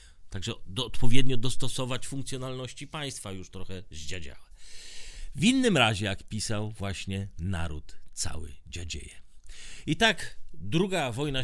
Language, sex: Polish, male